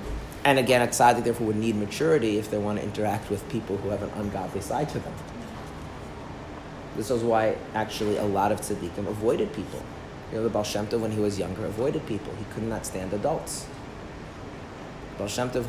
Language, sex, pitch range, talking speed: English, male, 100-120 Hz, 185 wpm